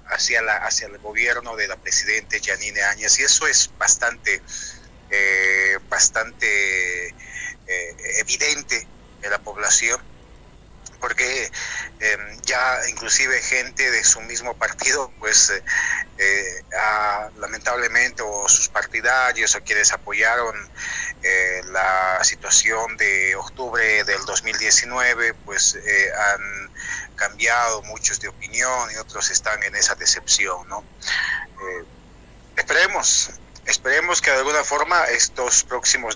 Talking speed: 115 wpm